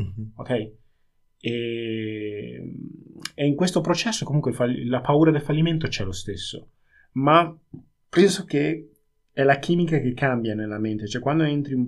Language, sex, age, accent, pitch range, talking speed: Italian, male, 20-39, native, 105-130 Hz, 140 wpm